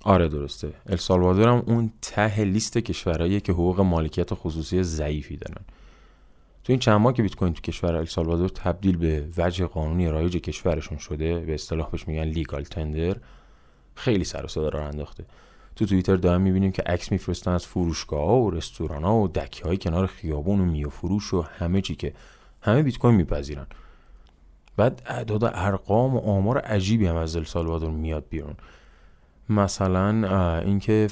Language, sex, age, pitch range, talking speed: Persian, male, 20-39, 80-105 Hz, 160 wpm